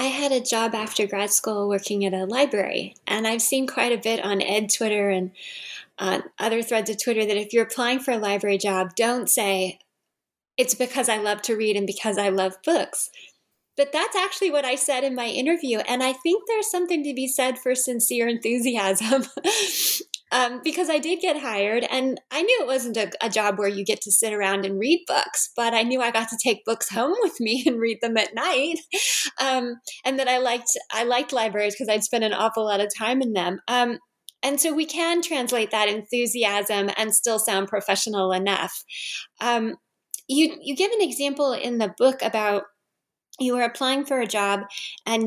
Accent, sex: American, female